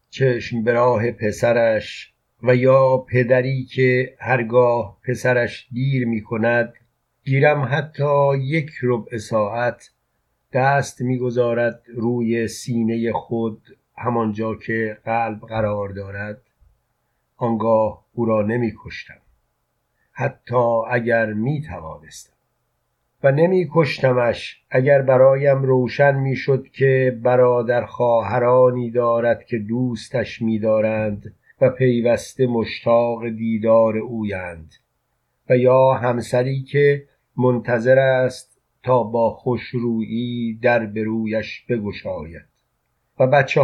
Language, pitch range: Persian, 110-130 Hz